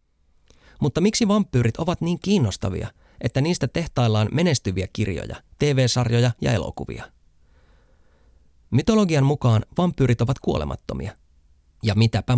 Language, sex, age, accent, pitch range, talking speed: Finnish, male, 30-49, native, 80-130 Hz, 100 wpm